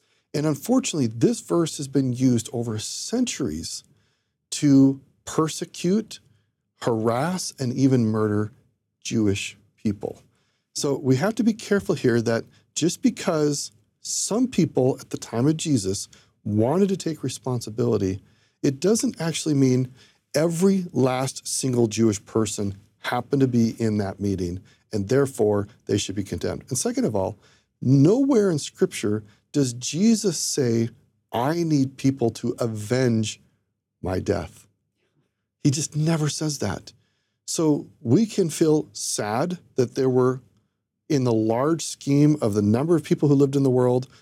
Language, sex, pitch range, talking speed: English, male, 110-150 Hz, 140 wpm